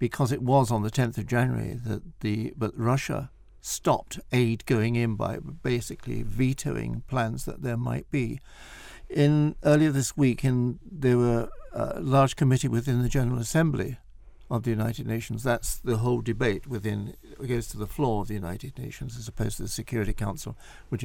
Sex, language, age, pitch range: male, English, 60-79, 115-140 Hz